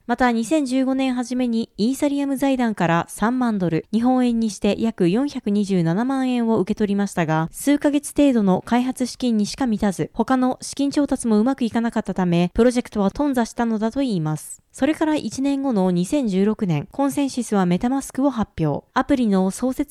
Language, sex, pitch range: Japanese, female, 195-270 Hz